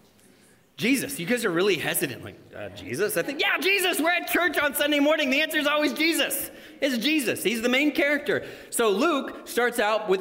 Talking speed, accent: 205 wpm, American